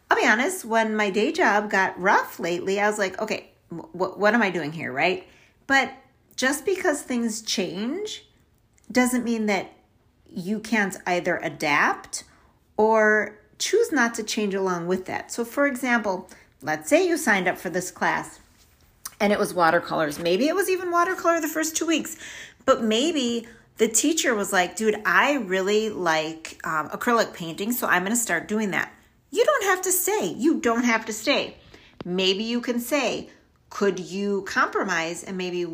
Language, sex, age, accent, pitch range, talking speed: English, female, 40-59, American, 185-255 Hz, 170 wpm